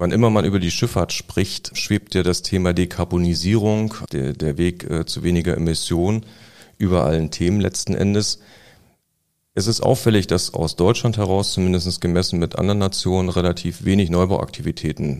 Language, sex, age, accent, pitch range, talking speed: German, male, 40-59, German, 85-95 Hz, 150 wpm